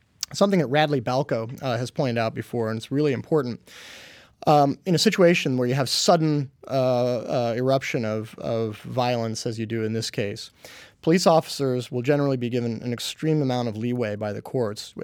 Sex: male